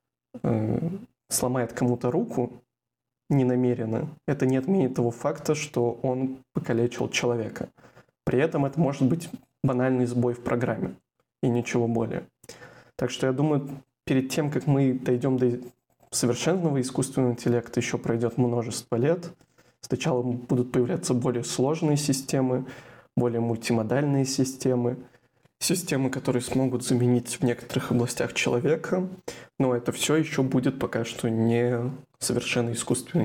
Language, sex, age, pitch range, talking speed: Russian, male, 20-39, 120-140 Hz, 125 wpm